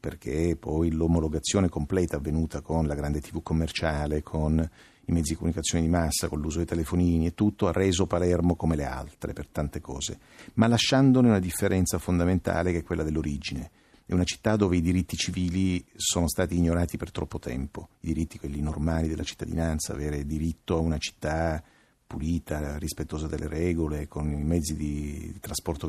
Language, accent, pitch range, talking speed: Italian, native, 80-90 Hz, 170 wpm